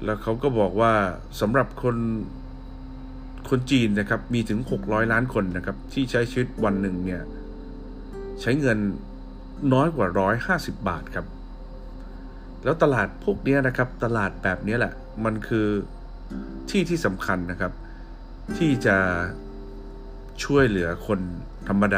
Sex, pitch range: male, 70-110 Hz